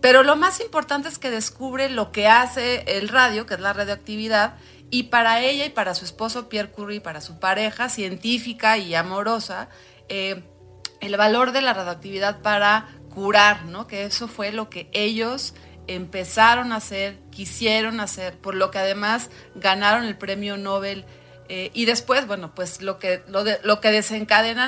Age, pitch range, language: 30-49, 185-230 Hz, Spanish